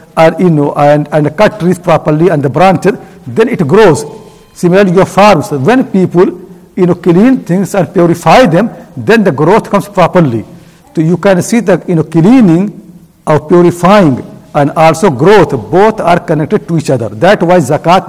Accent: Indian